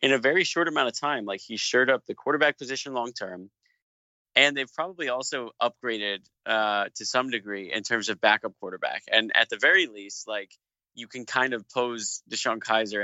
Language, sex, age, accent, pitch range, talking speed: English, male, 30-49, American, 105-130 Hz, 195 wpm